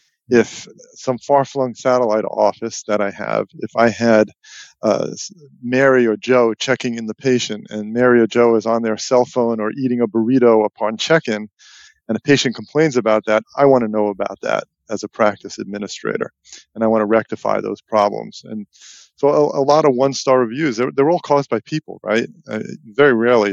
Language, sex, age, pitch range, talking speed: English, male, 40-59, 110-130 Hz, 190 wpm